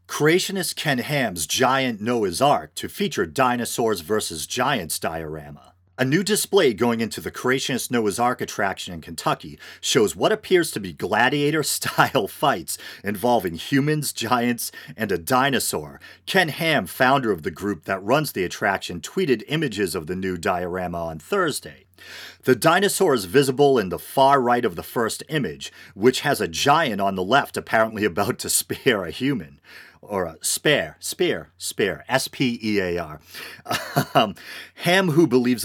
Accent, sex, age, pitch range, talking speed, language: American, male, 40-59, 95-140 Hz, 150 wpm, English